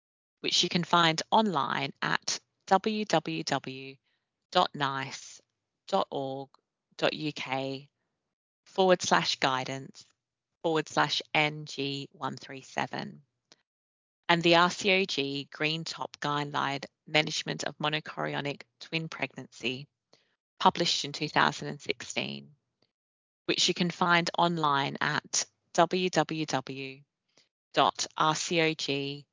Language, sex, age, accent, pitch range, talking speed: English, female, 30-49, British, 135-170 Hz, 70 wpm